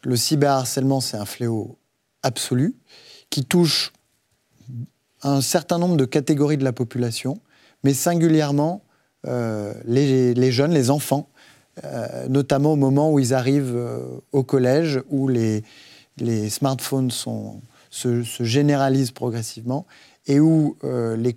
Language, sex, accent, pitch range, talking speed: French, male, French, 120-145 Hz, 130 wpm